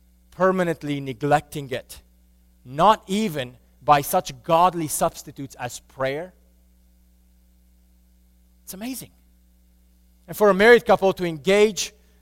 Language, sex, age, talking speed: English, male, 30-49, 100 wpm